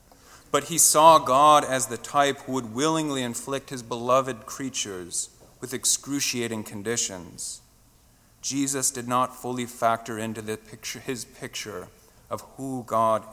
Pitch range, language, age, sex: 115-135 Hz, English, 40-59, male